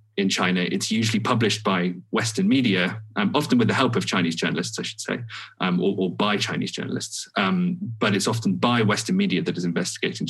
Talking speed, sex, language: 205 wpm, male, English